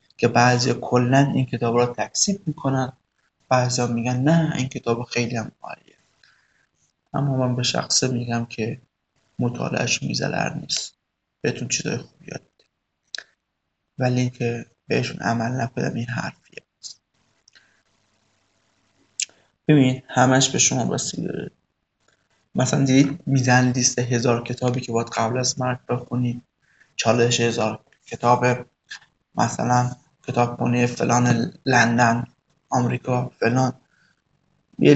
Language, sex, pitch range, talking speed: Persian, male, 120-130 Hz, 105 wpm